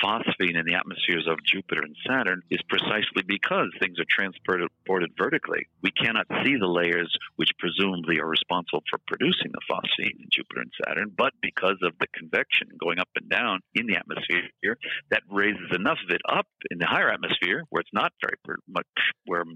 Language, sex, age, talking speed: English, male, 50-69, 185 wpm